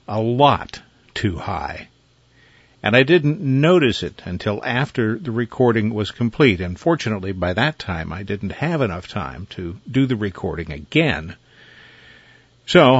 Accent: American